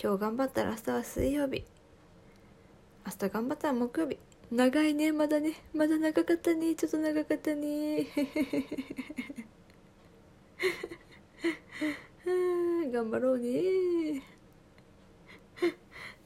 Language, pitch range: Japanese, 195-290 Hz